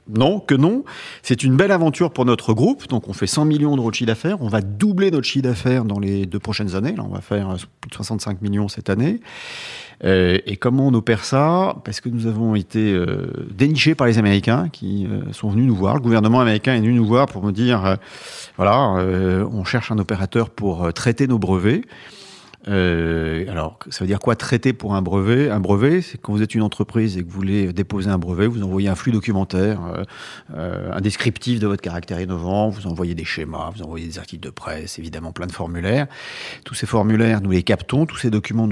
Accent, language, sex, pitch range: French, French, male, 95-125 Hz